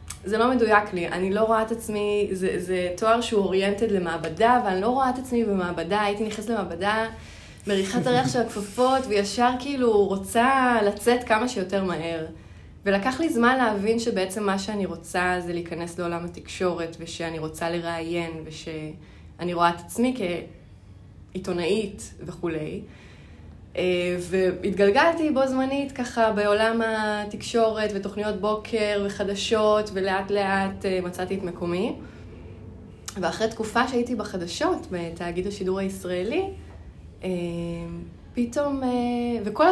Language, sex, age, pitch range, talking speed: Hebrew, female, 20-39, 180-240 Hz, 125 wpm